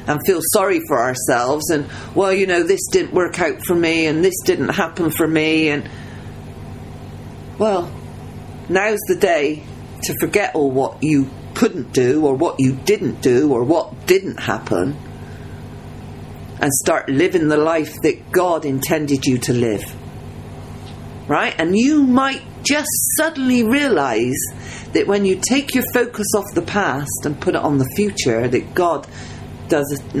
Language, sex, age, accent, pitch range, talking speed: English, female, 40-59, British, 145-230 Hz, 155 wpm